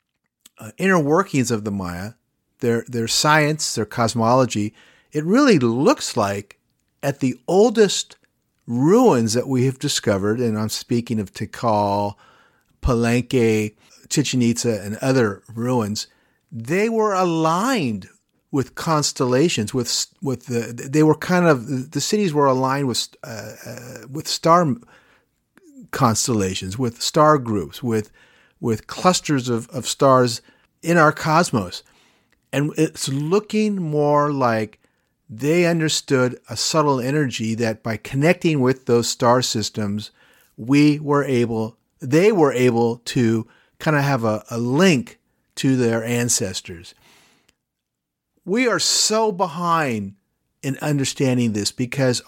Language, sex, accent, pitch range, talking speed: English, male, American, 115-150 Hz, 125 wpm